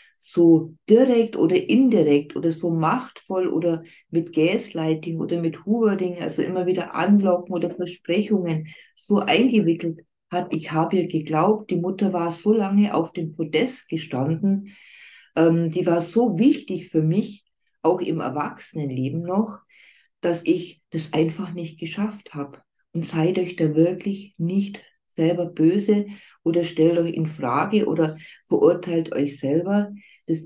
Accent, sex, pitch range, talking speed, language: German, female, 160-200 Hz, 140 wpm, German